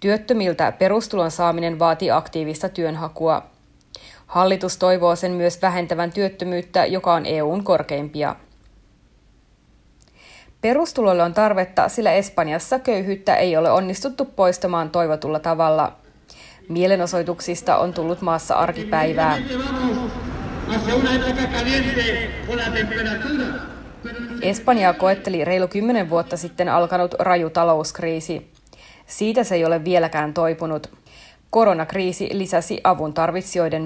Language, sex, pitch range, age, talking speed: Finnish, female, 165-200 Hz, 20-39, 90 wpm